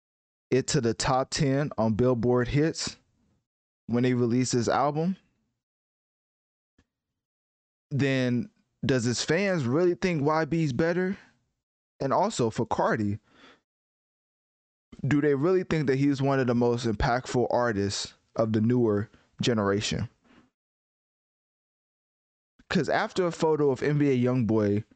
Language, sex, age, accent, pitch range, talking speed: English, male, 20-39, American, 105-135 Hz, 115 wpm